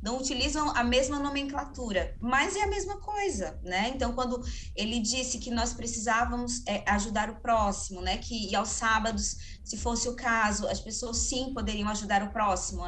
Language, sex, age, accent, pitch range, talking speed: Portuguese, female, 20-39, Brazilian, 200-260 Hz, 175 wpm